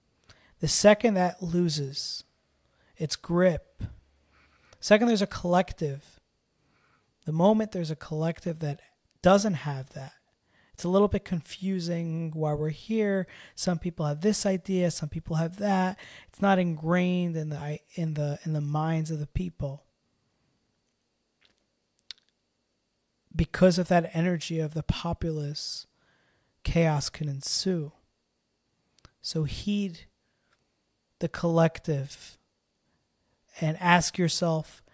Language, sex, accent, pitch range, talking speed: English, male, American, 150-175 Hz, 115 wpm